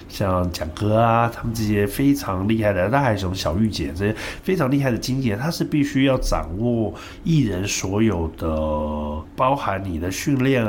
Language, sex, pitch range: Chinese, male, 90-125 Hz